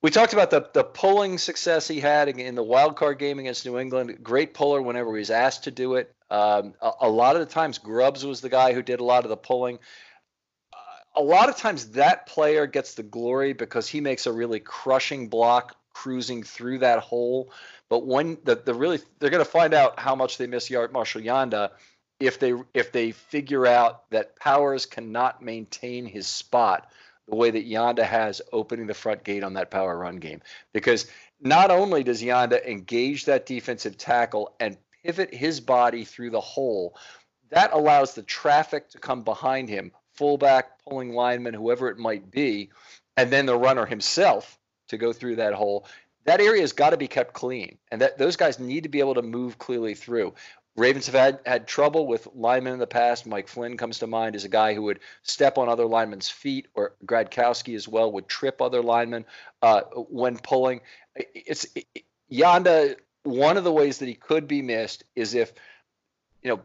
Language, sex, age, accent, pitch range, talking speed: English, male, 40-59, American, 115-140 Hz, 195 wpm